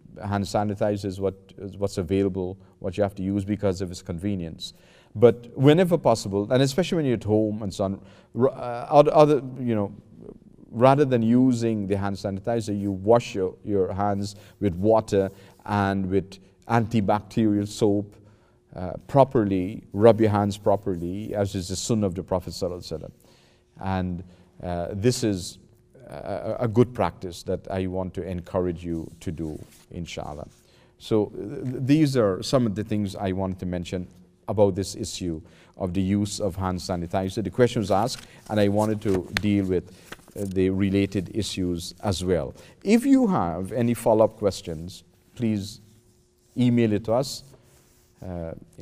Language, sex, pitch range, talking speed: English, male, 95-115 Hz, 155 wpm